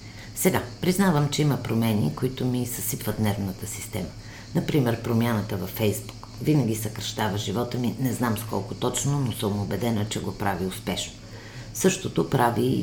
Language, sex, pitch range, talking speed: Bulgarian, female, 100-125 Hz, 150 wpm